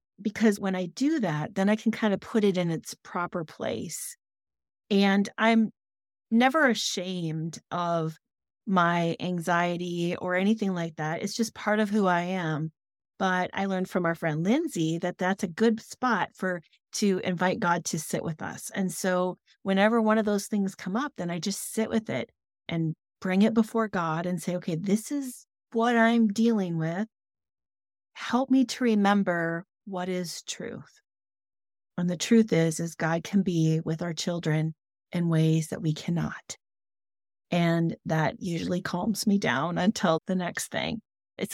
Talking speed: 170 wpm